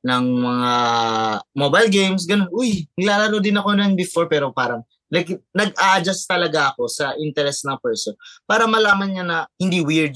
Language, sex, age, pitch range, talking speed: Filipino, male, 20-39, 135-195 Hz, 160 wpm